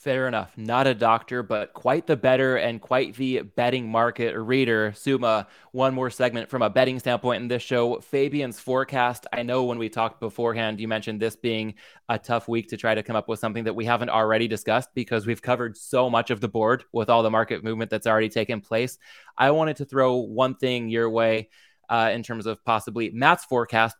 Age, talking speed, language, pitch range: 20-39, 215 wpm, English, 110-125 Hz